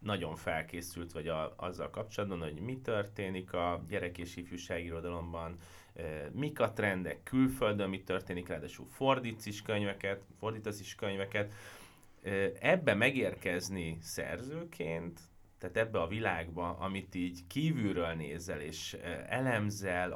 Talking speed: 120 wpm